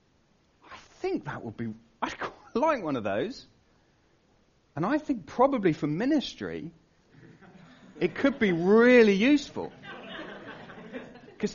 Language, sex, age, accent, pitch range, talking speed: English, male, 40-59, British, 145-235 Hz, 115 wpm